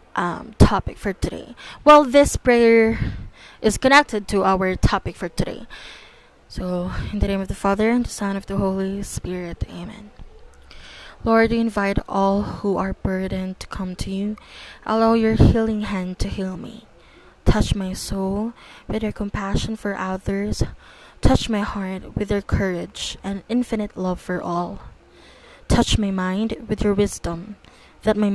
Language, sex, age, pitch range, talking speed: English, female, 20-39, 185-215 Hz, 155 wpm